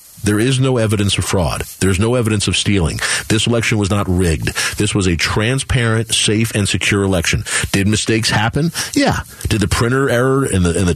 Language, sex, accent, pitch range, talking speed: English, male, American, 95-115 Hz, 190 wpm